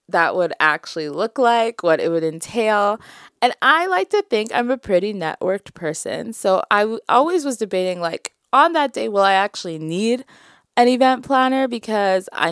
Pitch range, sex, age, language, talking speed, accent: 165-230 Hz, female, 20-39, English, 175 wpm, American